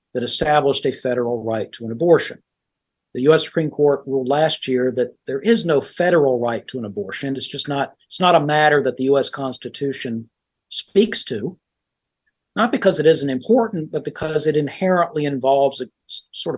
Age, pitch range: 50-69, 125-155 Hz